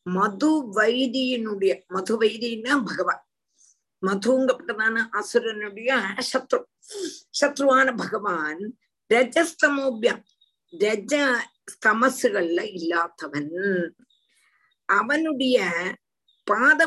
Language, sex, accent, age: Tamil, female, native, 50-69